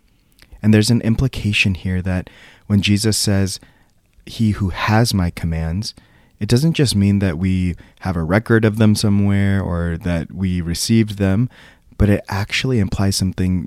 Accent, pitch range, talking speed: American, 90-105 Hz, 160 wpm